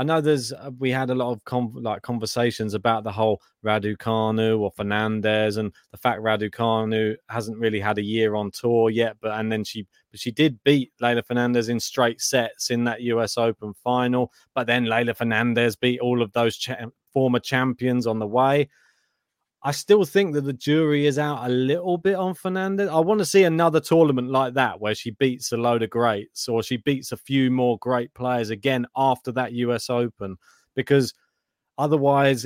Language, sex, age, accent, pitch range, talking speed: English, male, 20-39, British, 110-135 Hz, 190 wpm